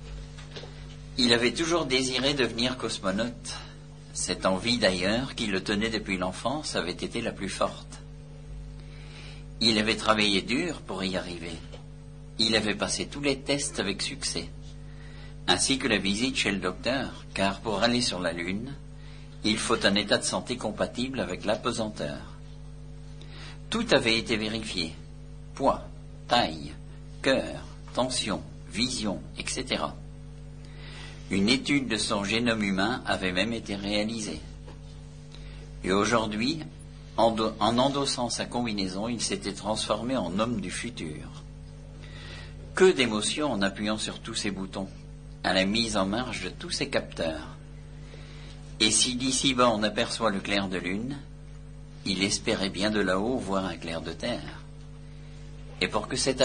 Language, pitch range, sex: French, 95-145 Hz, male